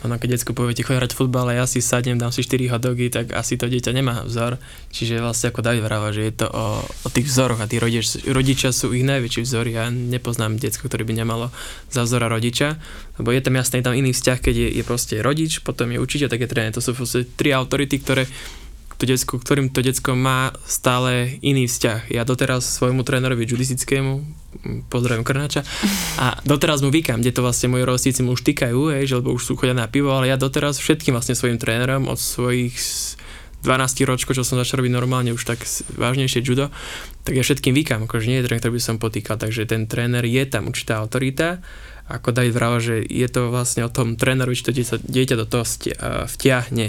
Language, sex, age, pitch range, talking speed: Slovak, male, 20-39, 115-130 Hz, 210 wpm